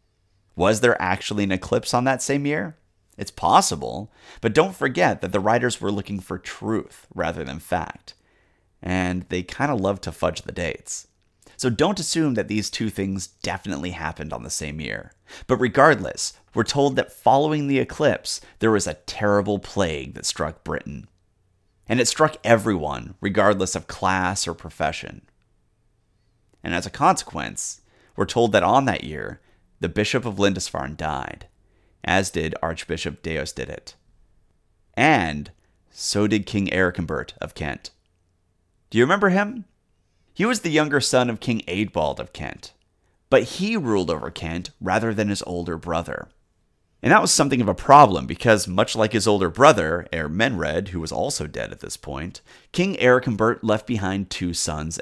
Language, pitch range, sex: English, 90-115 Hz, male